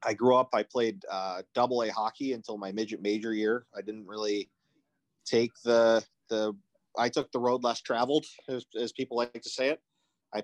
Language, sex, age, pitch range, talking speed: English, male, 30-49, 105-115 Hz, 195 wpm